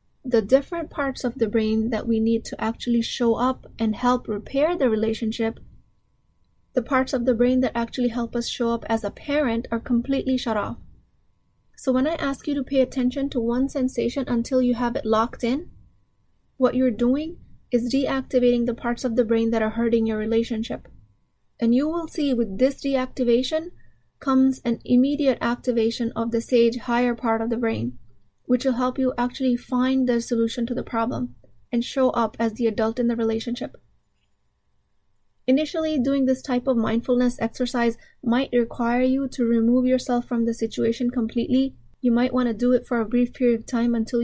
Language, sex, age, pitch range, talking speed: English, female, 20-39, 230-255 Hz, 185 wpm